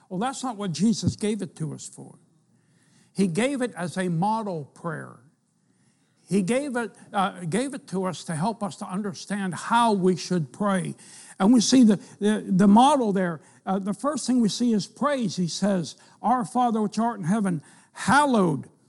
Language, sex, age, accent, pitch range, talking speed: English, male, 60-79, American, 180-235 Hz, 180 wpm